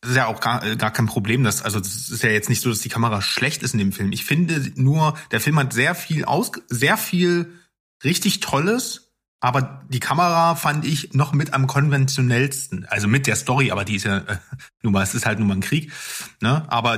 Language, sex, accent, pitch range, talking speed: German, male, German, 110-140 Hz, 230 wpm